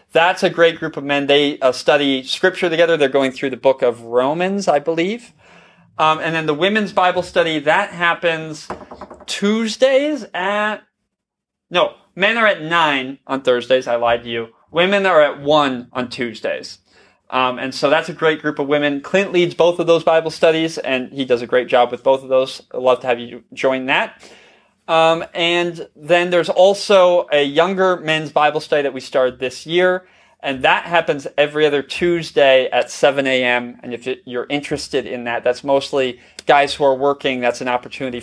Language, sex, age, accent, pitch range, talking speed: English, male, 30-49, American, 125-175 Hz, 190 wpm